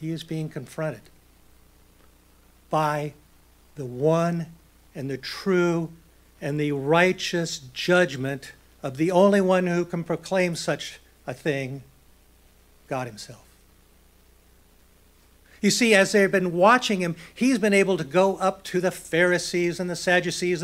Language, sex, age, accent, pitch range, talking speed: English, male, 60-79, American, 125-190 Hz, 130 wpm